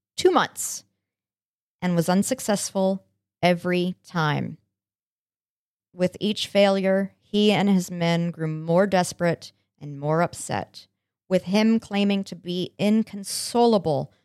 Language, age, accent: English, 40-59, American